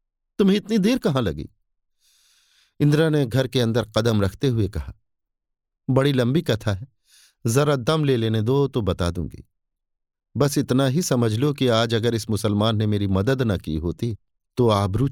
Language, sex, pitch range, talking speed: Hindi, male, 95-130 Hz, 175 wpm